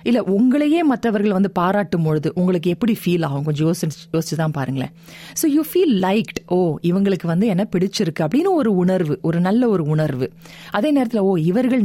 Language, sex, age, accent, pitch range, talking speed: Tamil, female, 30-49, native, 170-235 Hz, 170 wpm